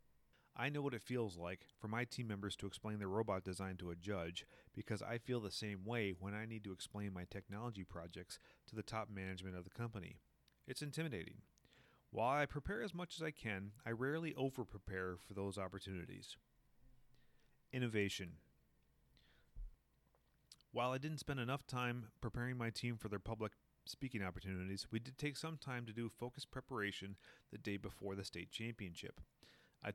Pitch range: 100-125 Hz